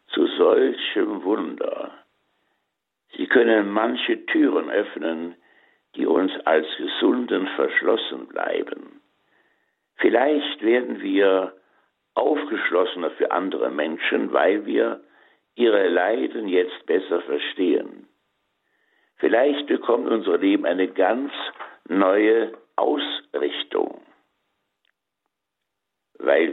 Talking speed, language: 85 wpm, German